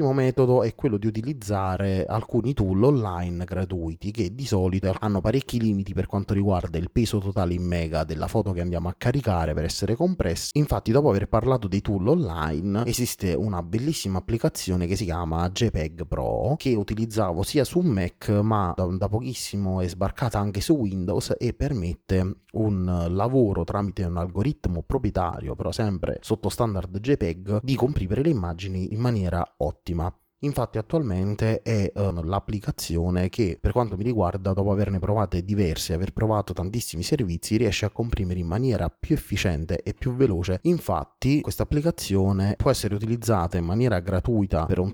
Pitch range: 90-115 Hz